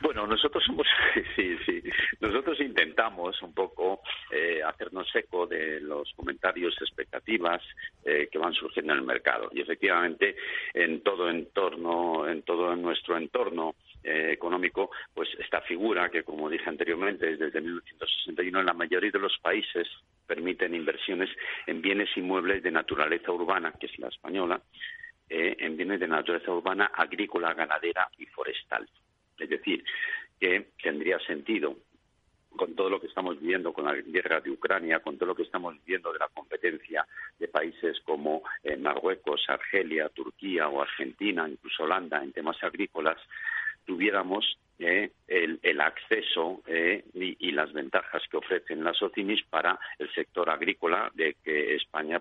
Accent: Spanish